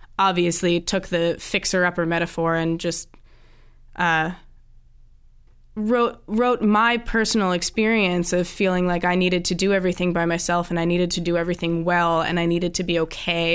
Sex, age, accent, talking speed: female, 20-39, American, 165 wpm